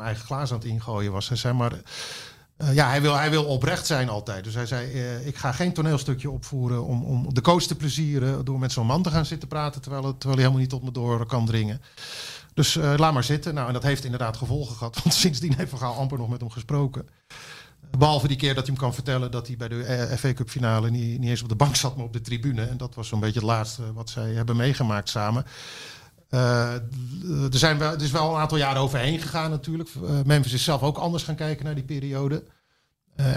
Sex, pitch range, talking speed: male, 120-145 Hz, 245 wpm